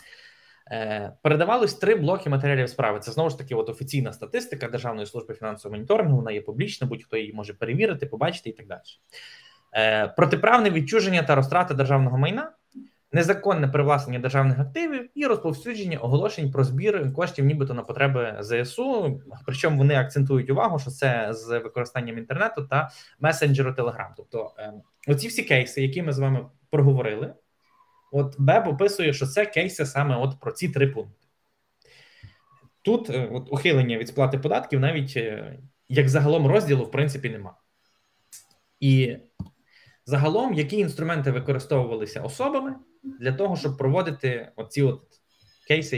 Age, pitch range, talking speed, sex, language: 20-39, 125-160 Hz, 140 wpm, male, Russian